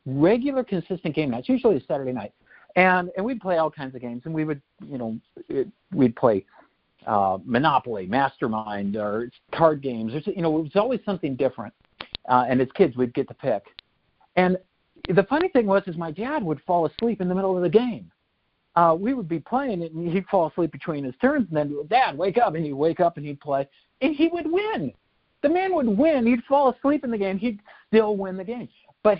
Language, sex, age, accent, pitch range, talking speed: English, male, 50-69, American, 135-210 Hz, 220 wpm